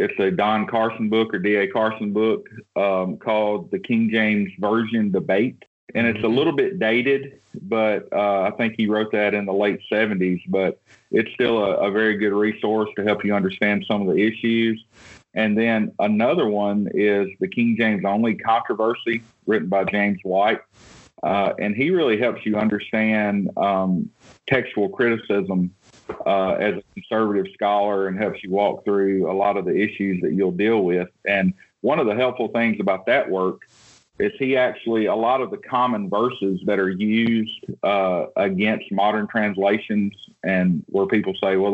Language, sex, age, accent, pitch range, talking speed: English, male, 40-59, American, 100-110 Hz, 175 wpm